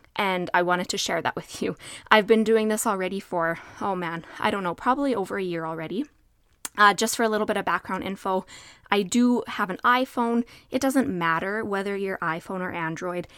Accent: American